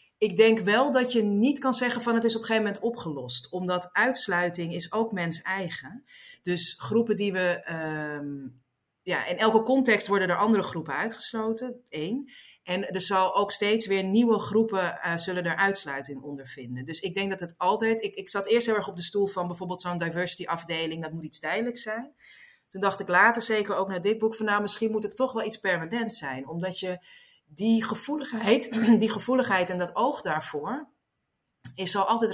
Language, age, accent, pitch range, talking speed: Dutch, 30-49, Dutch, 170-225 Hz, 195 wpm